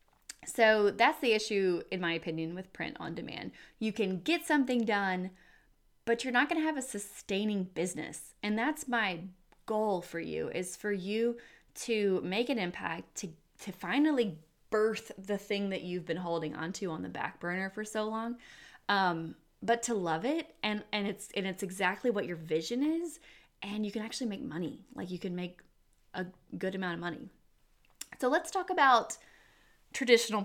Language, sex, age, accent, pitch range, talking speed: English, female, 20-39, American, 180-230 Hz, 175 wpm